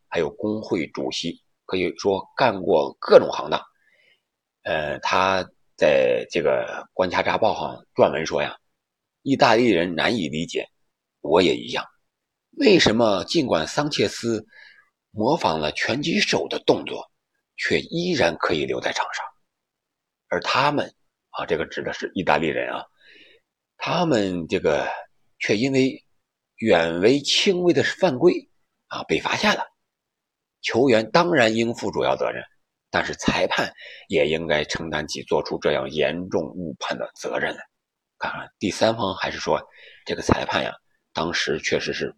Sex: male